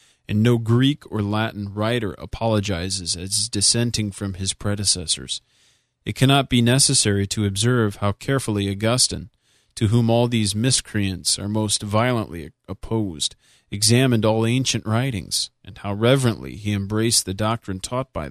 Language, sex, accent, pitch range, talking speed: English, male, American, 100-120 Hz, 140 wpm